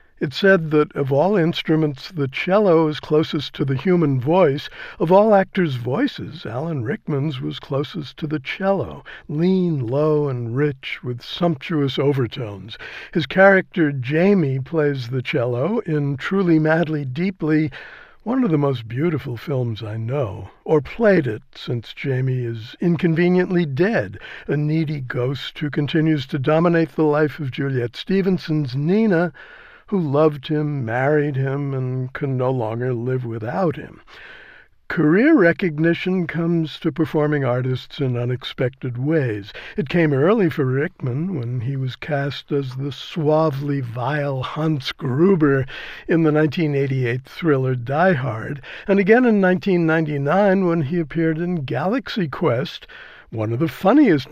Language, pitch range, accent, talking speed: English, 130-170 Hz, American, 140 wpm